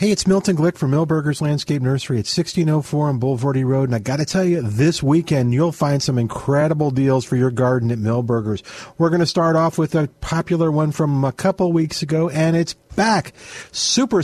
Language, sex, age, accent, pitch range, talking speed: English, male, 50-69, American, 125-180 Hz, 200 wpm